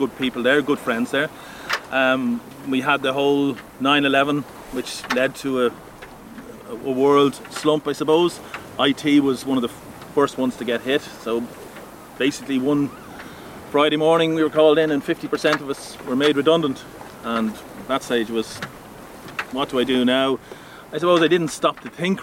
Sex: male